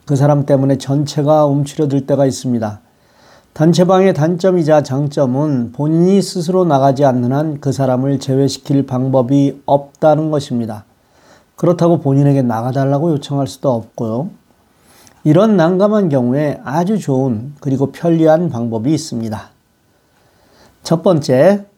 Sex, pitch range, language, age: male, 130-170 Hz, Korean, 40-59